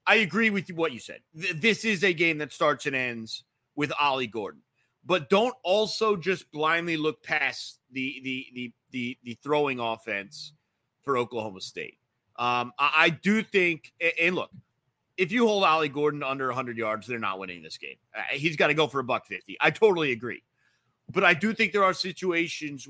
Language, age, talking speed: English, 30-49, 185 wpm